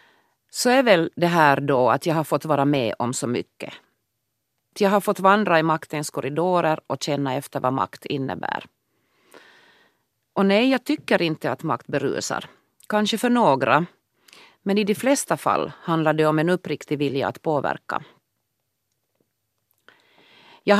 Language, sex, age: Swedish, female, 40-59